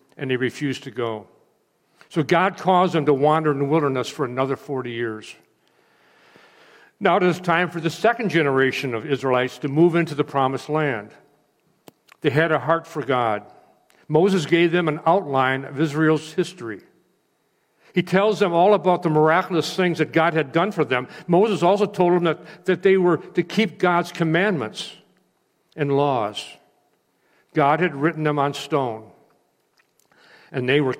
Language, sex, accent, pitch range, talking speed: English, male, American, 130-175 Hz, 165 wpm